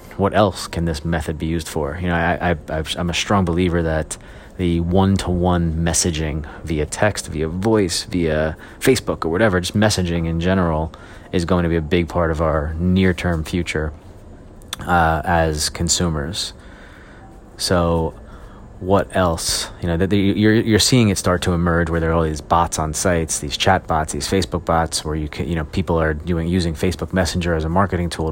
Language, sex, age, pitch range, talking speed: English, male, 30-49, 80-95 Hz, 190 wpm